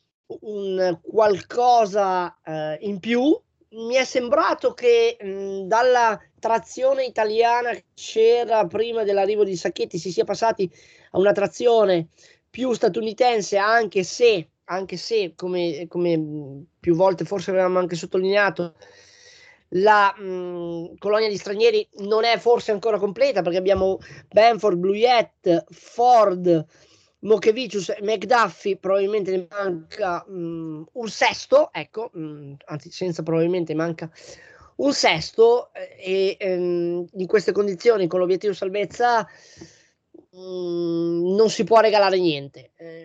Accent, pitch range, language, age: native, 175-230 Hz, Italian, 20-39